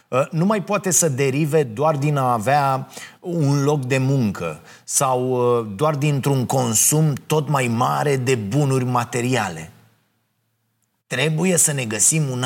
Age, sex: 30-49, male